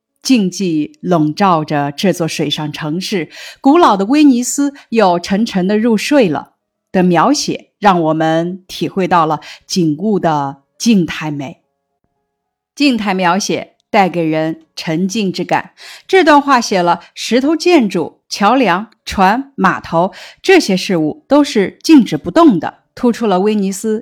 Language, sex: Chinese, female